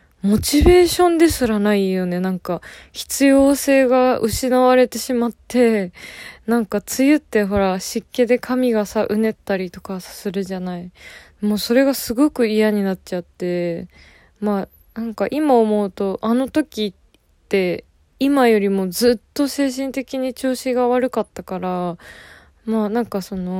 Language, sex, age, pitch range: Japanese, female, 20-39, 190-245 Hz